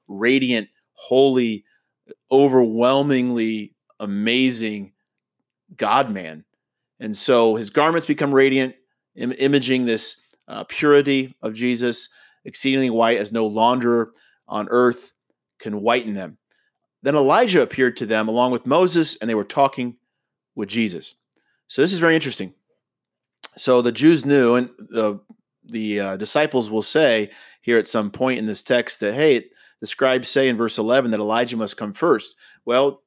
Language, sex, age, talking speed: English, male, 30-49, 140 wpm